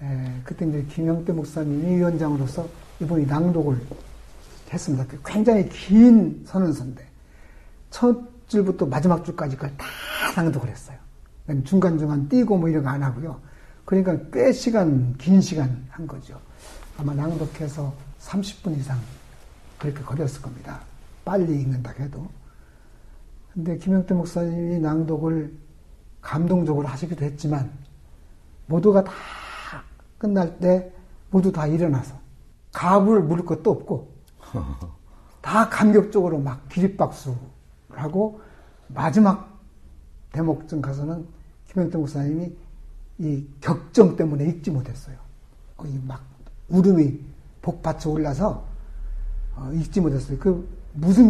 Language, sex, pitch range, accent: Korean, male, 130-180 Hz, native